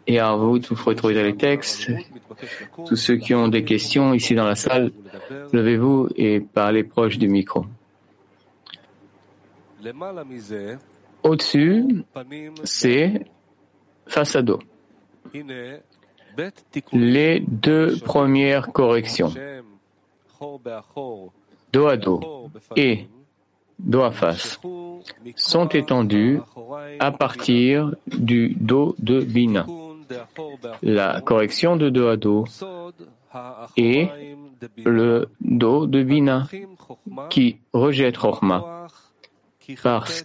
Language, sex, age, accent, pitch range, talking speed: English, male, 50-69, French, 110-145 Hz, 95 wpm